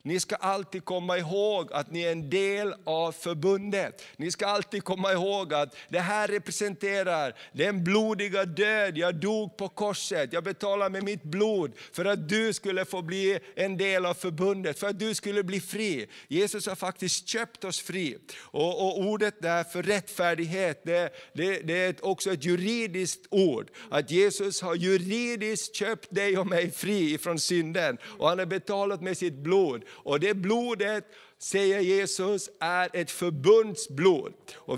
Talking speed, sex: 165 wpm, male